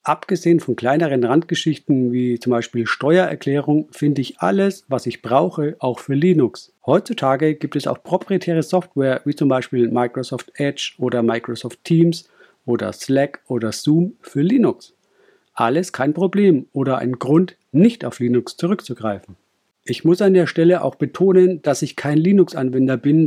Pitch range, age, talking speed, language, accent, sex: 130-170 Hz, 50-69, 150 wpm, German, German, male